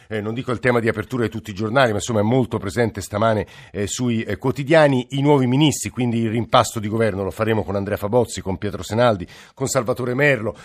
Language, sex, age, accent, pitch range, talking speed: Italian, male, 50-69, native, 105-125 Hz, 225 wpm